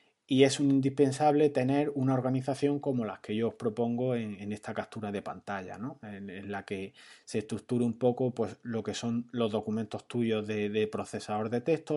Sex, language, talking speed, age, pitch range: male, Spanish, 185 wpm, 30-49, 110-140 Hz